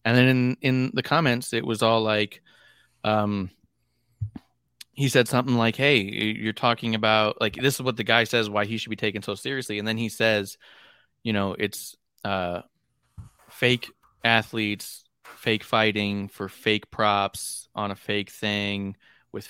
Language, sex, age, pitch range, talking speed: English, male, 20-39, 100-115 Hz, 165 wpm